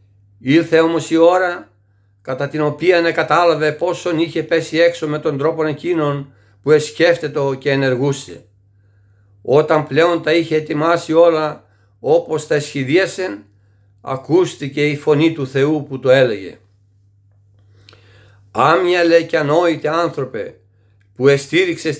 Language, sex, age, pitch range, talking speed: Greek, male, 60-79, 105-160 Hz, 120 wpm